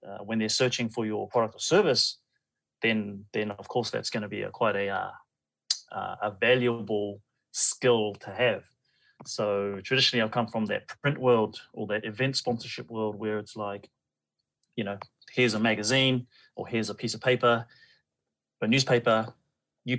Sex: male